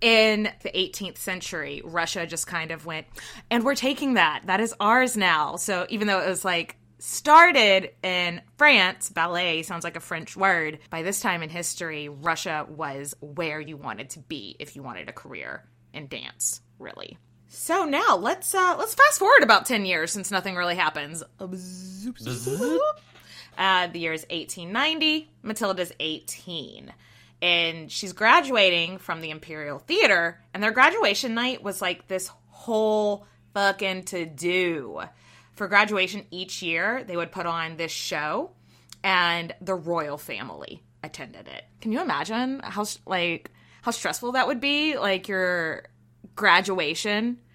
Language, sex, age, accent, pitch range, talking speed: English, female, 20-39, American, 170-220 Hz, 150 wpm